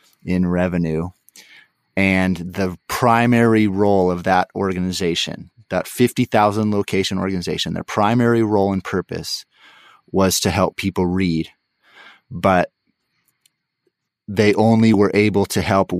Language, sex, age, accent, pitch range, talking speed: English, male, 30-49, American, 90-105 Hz, 115 wpm